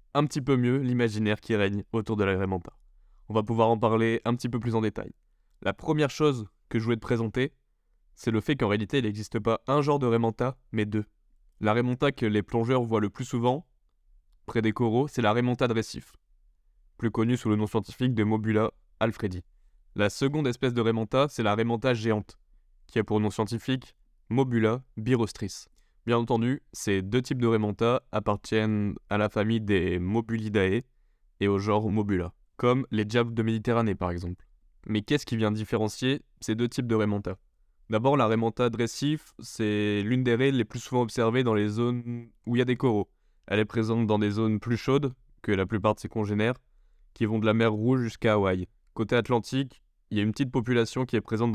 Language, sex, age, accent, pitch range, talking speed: French, male, 20-39, French, 105-120 Hz, 200 wpm